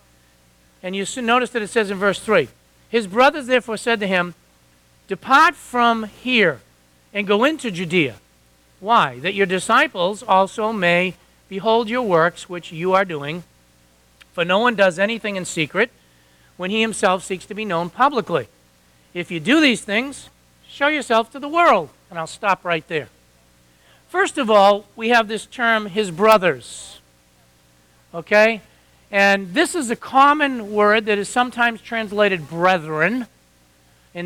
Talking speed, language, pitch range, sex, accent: 150 wpm, English, 165-230 Hz, male, American